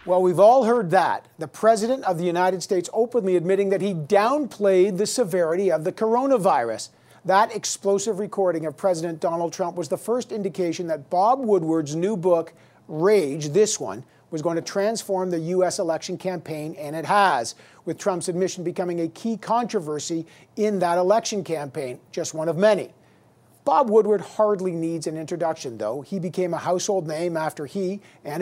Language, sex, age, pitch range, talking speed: English, male, 50-69, 170-205 Hz, 170 wpm